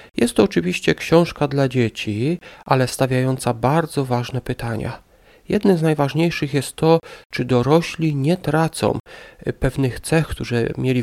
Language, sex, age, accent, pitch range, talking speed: English, male, 40-59, Polish, 125-160 Hz, 130 wpm